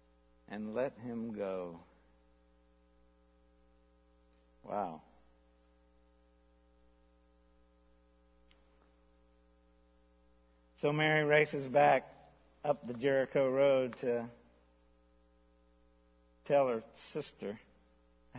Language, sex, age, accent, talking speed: English, male, 60-79, American, 60 wpm